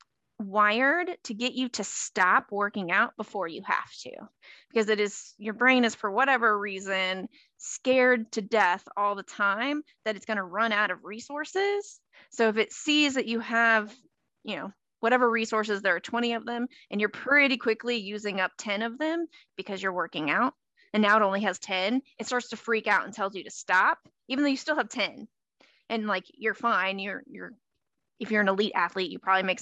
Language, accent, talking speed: English, American, 205 wpm